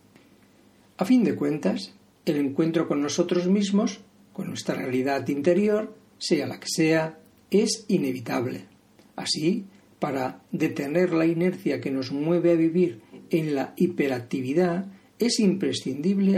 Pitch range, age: 145-195 Hz, 50-69